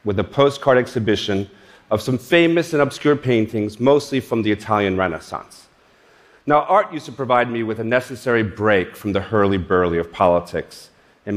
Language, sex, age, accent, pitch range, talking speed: English, male, 40-59, American, 105-145 Hz, 165 wpm